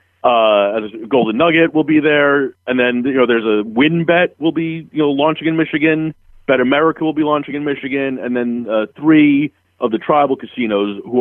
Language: English